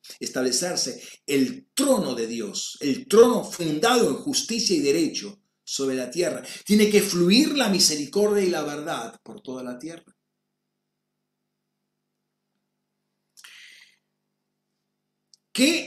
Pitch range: 165-220 Hz